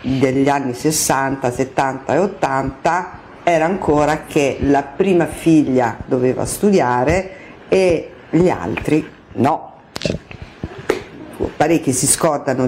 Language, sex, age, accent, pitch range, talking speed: Italian, female, 50-69, native, 135-180 Hz, 105 wpm